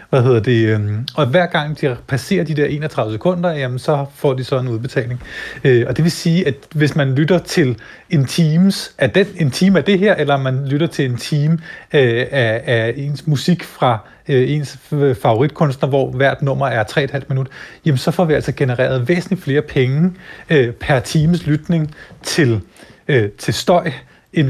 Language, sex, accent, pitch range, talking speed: Danish, male, native, 125-155 Hz, 180 wpm